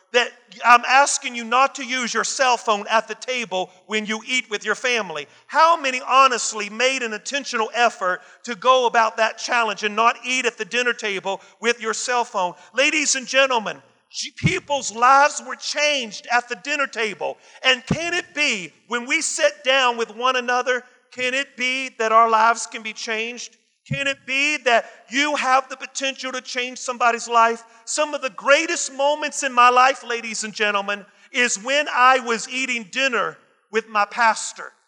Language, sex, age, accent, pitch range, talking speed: English, male, 40-59, American, 220-260 Hz, 180 wpm